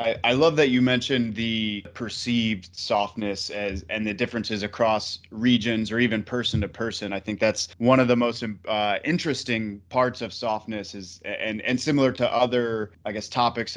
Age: 20-39